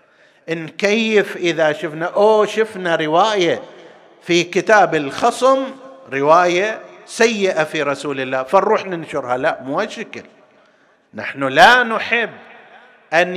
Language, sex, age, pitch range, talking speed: Arabic, male, 50-69, 155-225 Hz, 105 wpm